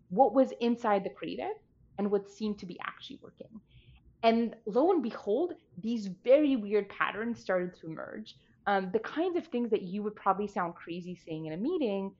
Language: English